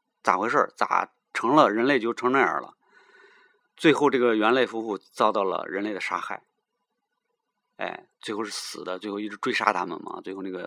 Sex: male